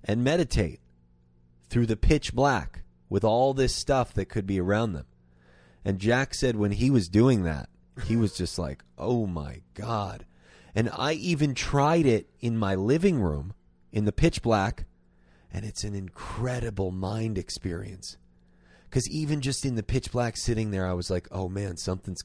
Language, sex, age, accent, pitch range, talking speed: English, male, 30-49, American, 75-120 Hz, 175 wpm